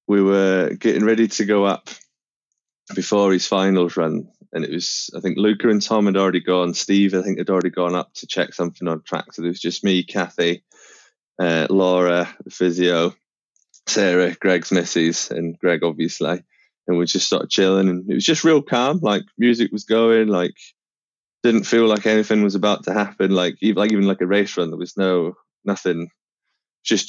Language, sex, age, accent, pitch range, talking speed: English, male, 20-39, British, 90-100 Hz, 195 wpm